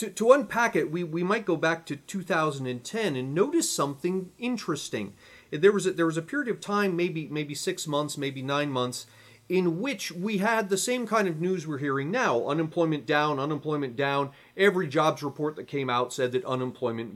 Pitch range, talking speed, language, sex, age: 145-205 Hz, 195 wpm, English, male, 30-49